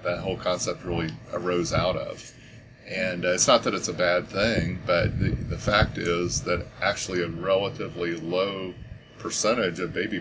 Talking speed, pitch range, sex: 170 wpm, 95-115 Hz, male